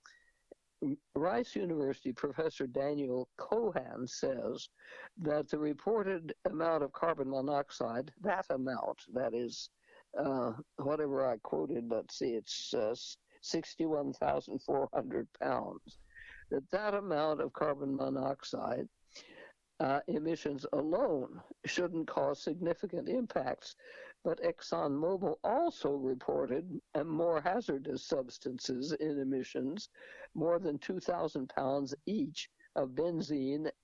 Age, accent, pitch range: 60-79, American, 140-200 Hz